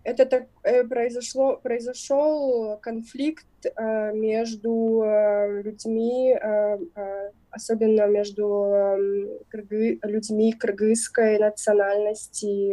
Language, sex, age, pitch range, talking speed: Russian, female, 20-39, 205-235 Hz, 55 wpm